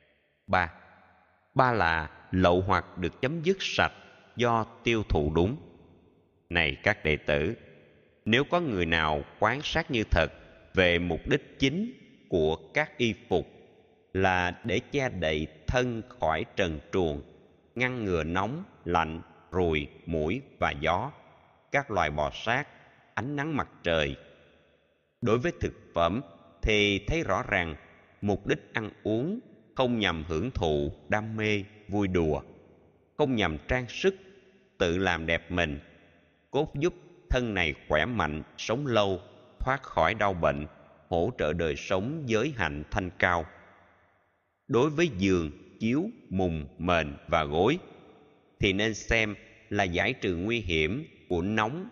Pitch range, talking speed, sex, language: 80-115 Hz, 145 wpm, male, Vietnamese